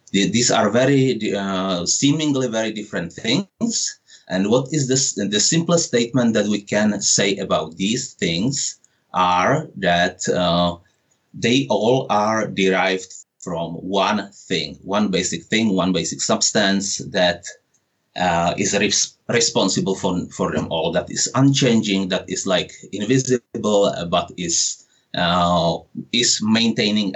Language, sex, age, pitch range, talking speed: English, male, 30-49, 90-125 Hz, 130 wpm